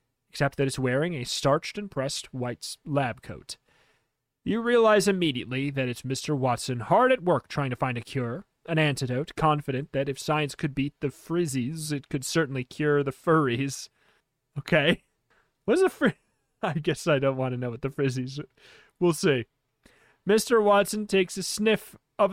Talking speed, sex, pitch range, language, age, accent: 175 wpm, male, 130-180 Hz, English, 30-49, American